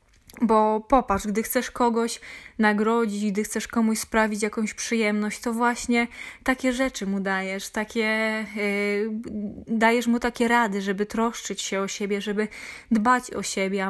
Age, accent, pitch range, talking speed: 20-39, native, 205-235 Hz, 140 wpm